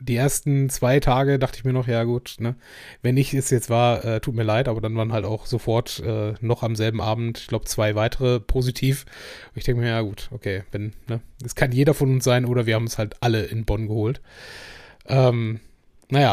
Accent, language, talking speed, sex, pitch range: German, German, 215 wpm, male, 115-135 Hz